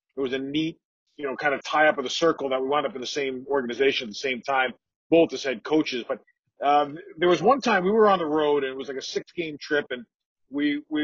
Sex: male